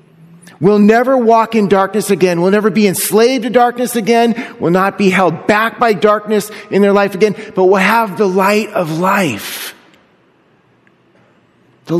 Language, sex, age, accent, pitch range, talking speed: English, male, 30-49, American, 160-215 Hz, 160 wpm